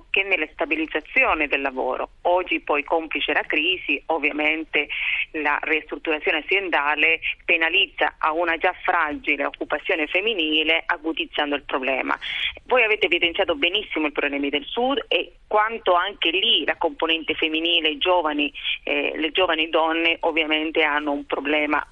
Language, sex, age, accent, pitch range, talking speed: Italian, female, 30-49, native, 155-185 Hz, 130 wpm